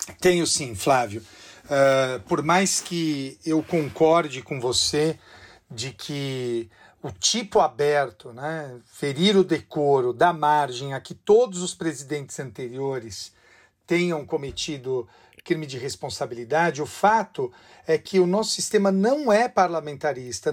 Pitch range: 145-185 Hz